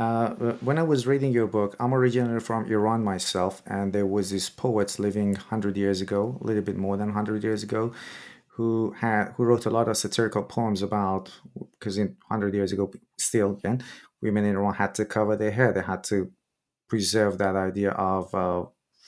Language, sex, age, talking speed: English, male, 30-49, 195 wpm